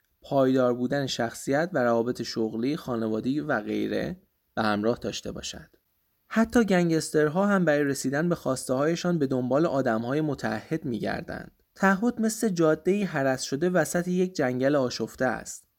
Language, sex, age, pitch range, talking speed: Persian, male, 20-39, 120-175 Hz, 145 wpm